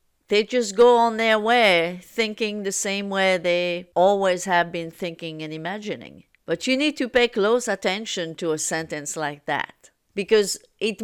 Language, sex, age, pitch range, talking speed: English, female, 50-69, 170-220 Hz, 170 wpm